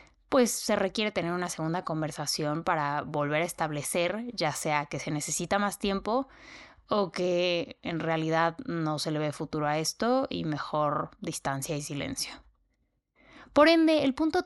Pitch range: 165-215 Hz